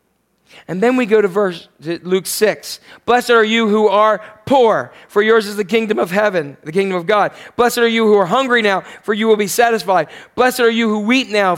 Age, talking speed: 40-59, 230 wpm